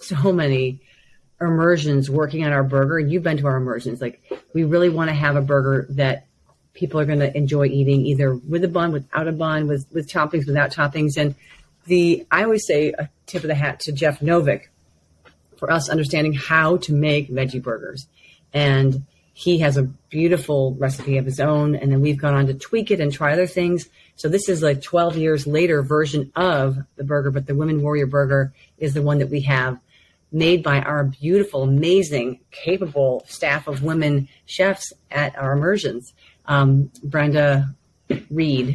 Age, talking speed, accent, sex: 40-59, 185 wpm, American, female